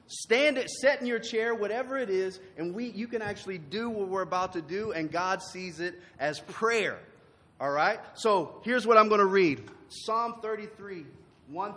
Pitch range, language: 160-220 Hz, English